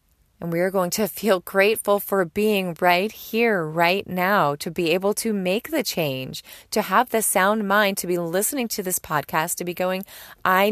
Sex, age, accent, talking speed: female, 30-49, American, 195 wpm